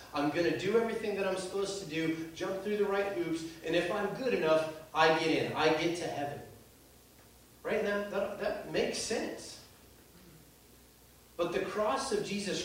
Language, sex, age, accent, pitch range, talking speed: English, male, 30-49, American, 140-180 Hz, 180 wpm